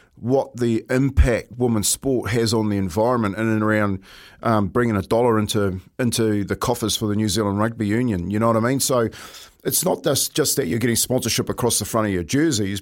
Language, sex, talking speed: English, male, 210 wpm